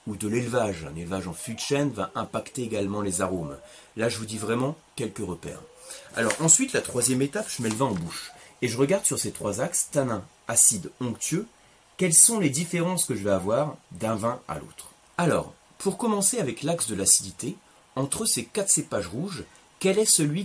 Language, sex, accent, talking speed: French, male, French, 205 wpm